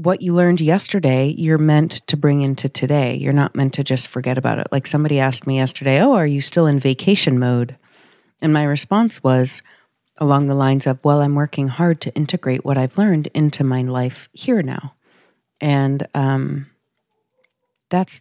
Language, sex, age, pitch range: English, female, 40-59, 135-165 Hz